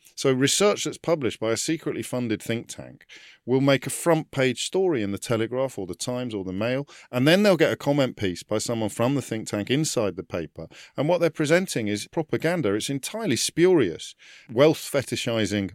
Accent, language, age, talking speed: British, English, 50-69, 200 wpm